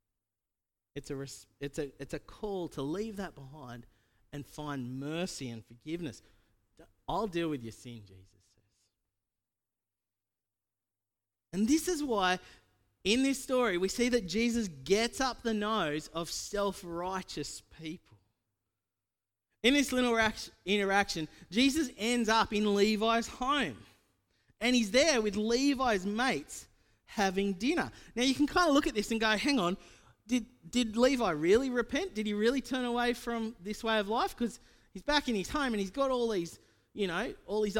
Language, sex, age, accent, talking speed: English, male, 30-49, Australian, 160 wpm